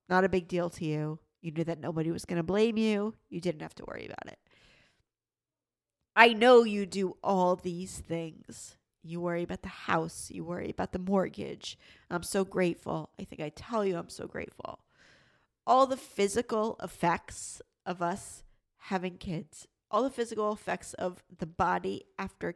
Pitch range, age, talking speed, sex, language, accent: 165-200 Hz, 40-59, 175 wpm, female, English, American